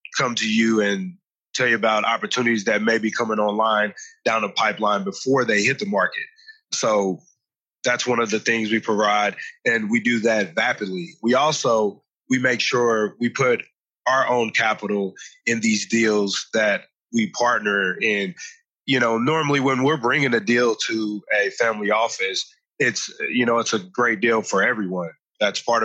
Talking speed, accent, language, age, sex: 170 wpm, American, English, 20-39, male